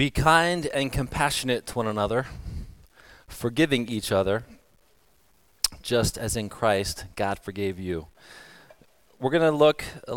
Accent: American